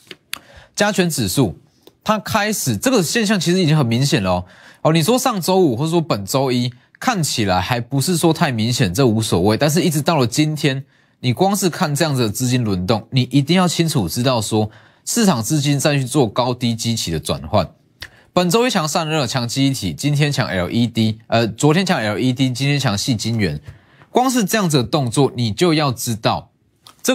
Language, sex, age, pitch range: Chinese, male, 20-39, 115-170 Hz